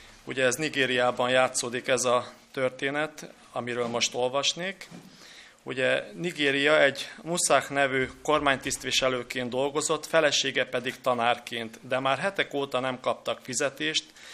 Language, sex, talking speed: Hungarian, male, 115 wpm